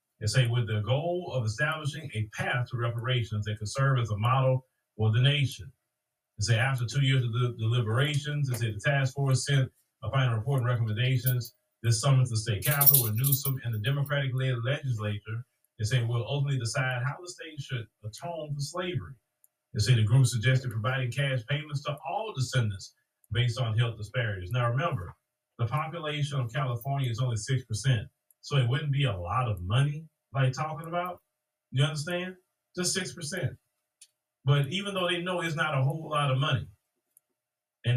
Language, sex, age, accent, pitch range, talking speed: English, male, 30-49, American, 120-140 Hz, 180 wpm